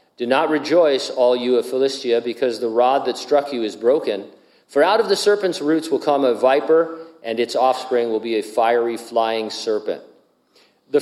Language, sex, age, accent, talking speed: English, male, 50-69, American, 190 wpm